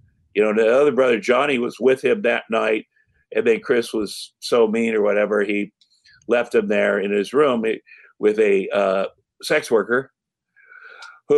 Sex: male